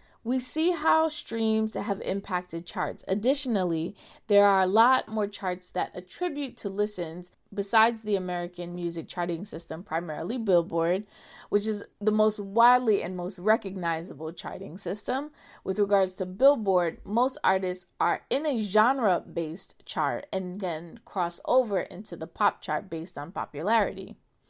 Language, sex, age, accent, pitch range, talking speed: English, female, 20-39, American, 180-235 Hz, 140 wpm